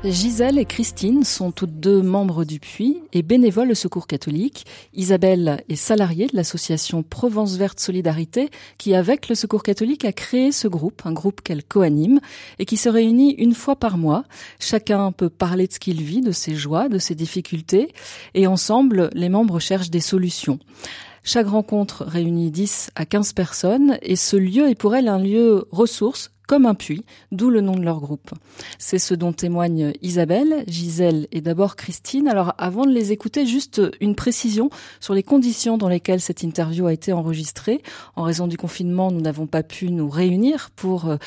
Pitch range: 170-220 Hz